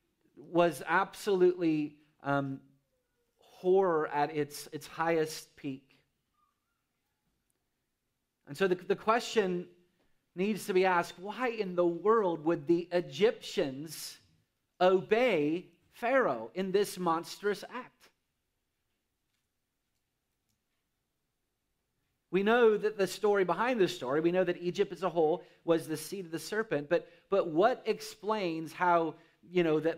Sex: male